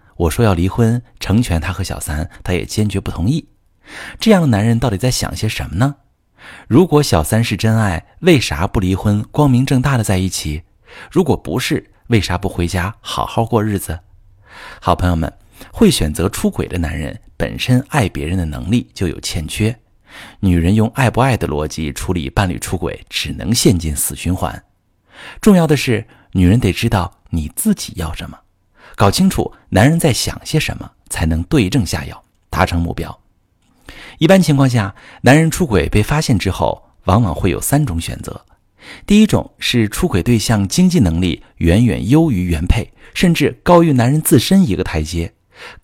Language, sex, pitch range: Chinese, male, 90-125 Hz